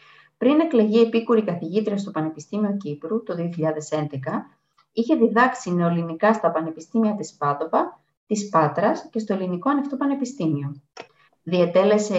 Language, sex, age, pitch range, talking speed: Greek, female, 20-39, 160-225 Hz, 120 wpm